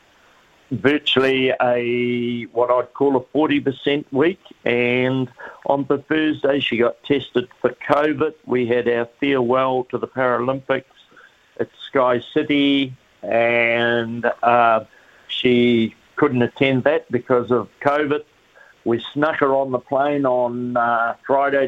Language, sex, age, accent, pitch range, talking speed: English, male, 60-79, Australian, 120-135 Hz, 125 wpm